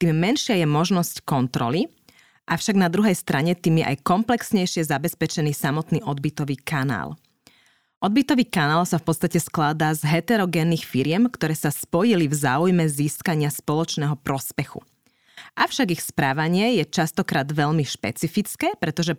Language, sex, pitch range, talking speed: Slovak, female, 150-190 Hz, 130 wpm